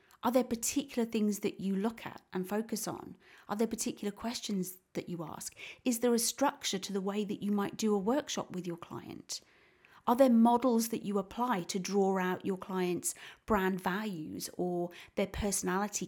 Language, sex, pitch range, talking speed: English, female, 190-245 Hz, 185 wpm